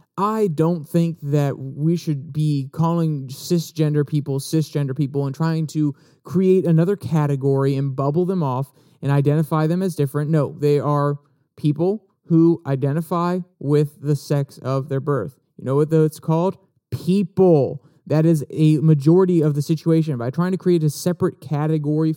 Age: 30-49